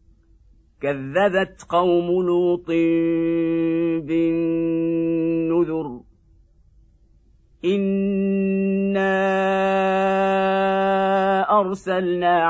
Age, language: 50-69, Arabic